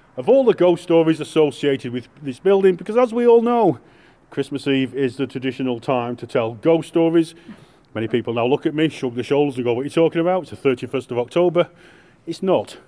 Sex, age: male, 30-49